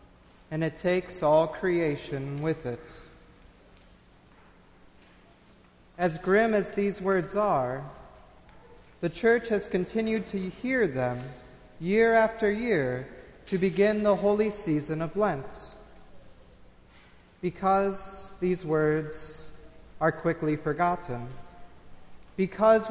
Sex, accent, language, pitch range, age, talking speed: male, American, English, 155-210 Hz, 40-59, 95 wpm